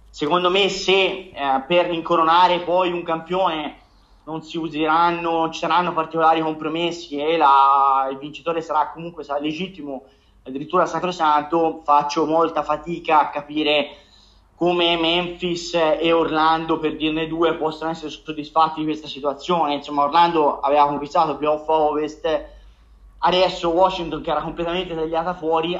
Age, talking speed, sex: 30-49, 135 wpm, male